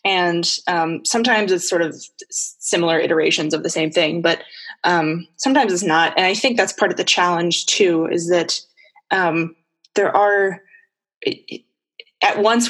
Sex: female